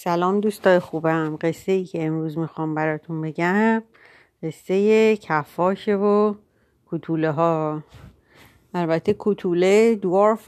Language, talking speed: Persian, 110 wpm